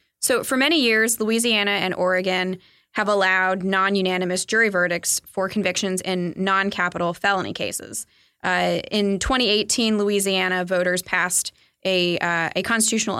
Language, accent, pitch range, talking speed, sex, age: English, American, 185-220 Hz, 125 wpm, female, 20-39